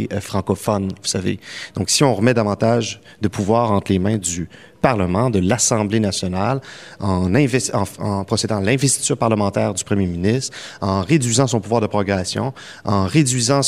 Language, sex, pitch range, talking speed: French, male, 100-135 Hz, 160 wpm